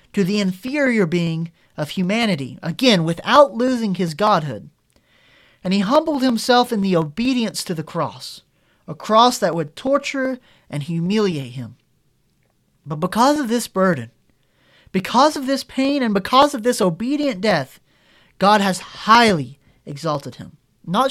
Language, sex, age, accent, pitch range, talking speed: English, male, 30-49, American, 150-225 Hz, 140 wpm